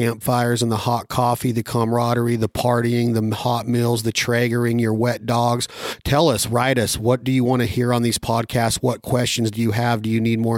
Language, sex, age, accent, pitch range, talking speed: English, male, 40-59, American, 115-125 Hz, 220 wpm